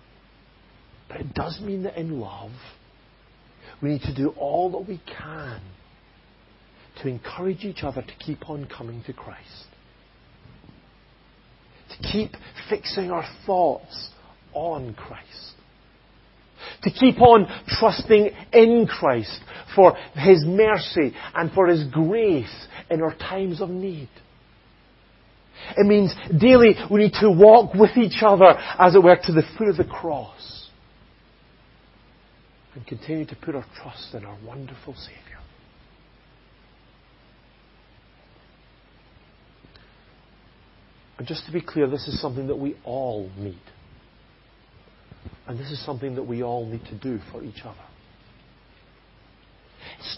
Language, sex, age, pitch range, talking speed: English, male, 40-59, 120-190 Hz, 125 wpm